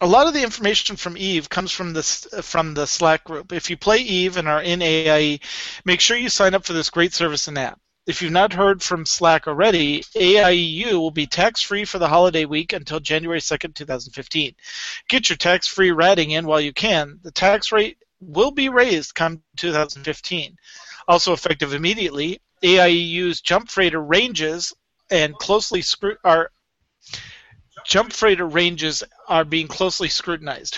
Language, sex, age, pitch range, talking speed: English, male, 40-59, 160-195 Hz, 175 wpm